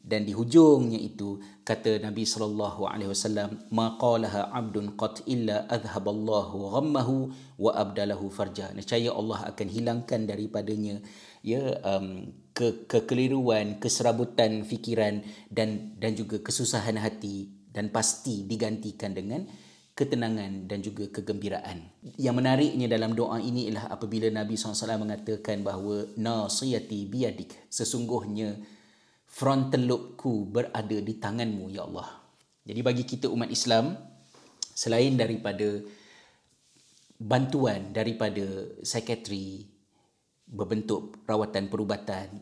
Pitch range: 105-120 Hz